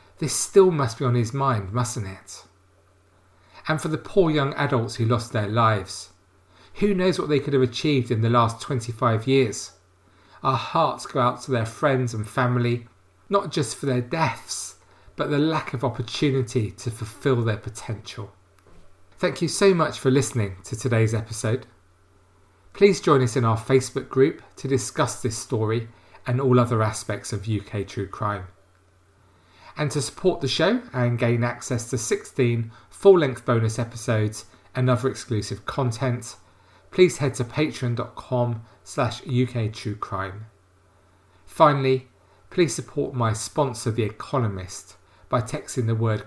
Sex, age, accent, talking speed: male, 40-59, British, 150 wpm